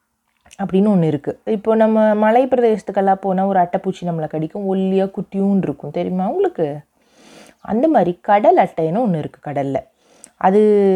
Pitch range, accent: 160-210 Hz, native